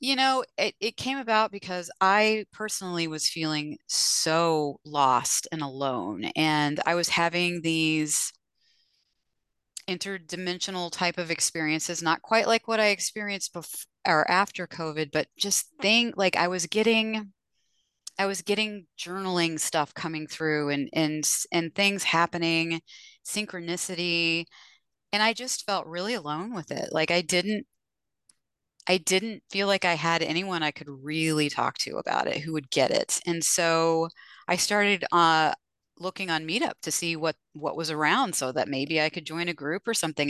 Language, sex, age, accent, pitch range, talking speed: English, female, 30-49, American, 155-195 Hz, 160 wpm